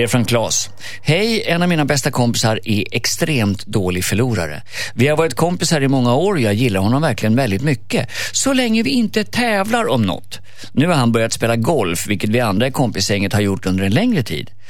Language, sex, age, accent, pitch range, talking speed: Swedish, male, 50-69, native, 105-160 Hz, 200 wpm